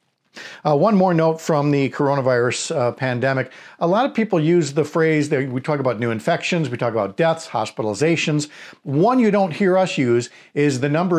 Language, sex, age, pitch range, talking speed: English, male, 50-69, 130-175 Hz, 195 wpm